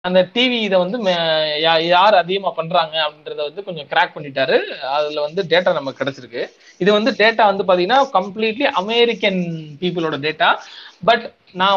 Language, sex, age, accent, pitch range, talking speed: Tamil, male, 20-39, native, 165-215 Hz, 145 wpm